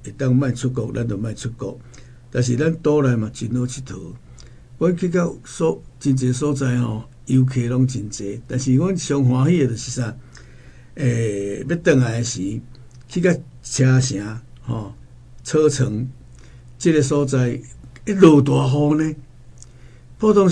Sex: male